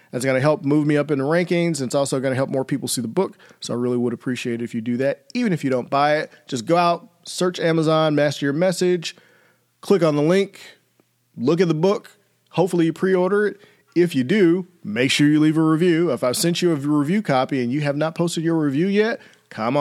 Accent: American